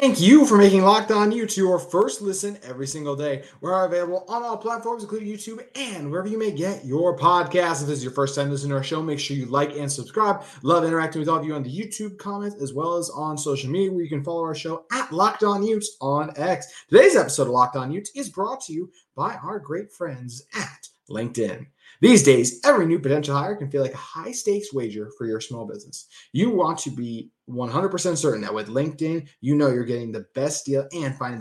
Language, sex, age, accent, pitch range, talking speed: English, male, 30-49, American, 135-190 Hz, 235 wpm